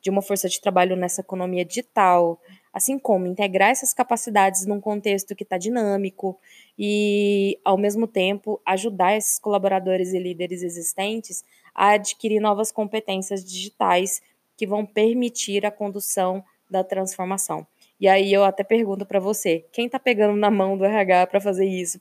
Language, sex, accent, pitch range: Portuguese, female, Brazilian, 190-220 Hz